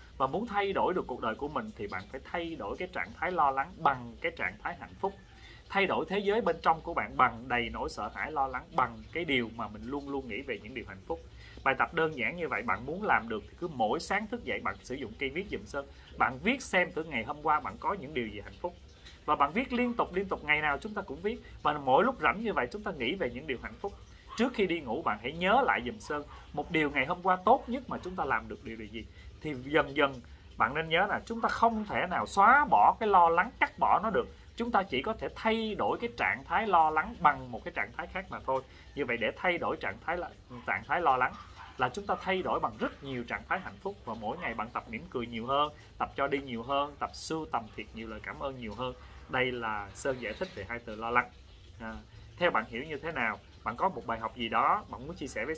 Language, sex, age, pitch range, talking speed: Vietnamese, male, 30-49, 115-180 Hz, 280 wpm